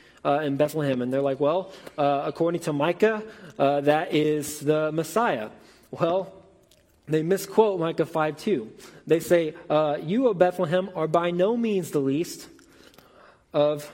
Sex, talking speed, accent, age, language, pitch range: male, 145 wpm, American, 20-39, English, 150-185 Hz